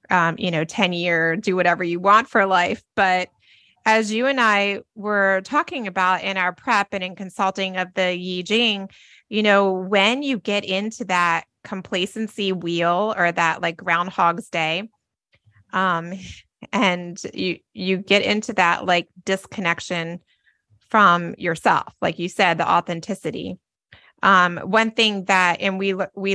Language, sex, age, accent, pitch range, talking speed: English, female, 30-49, American, 185-210 Hz, 150 wpm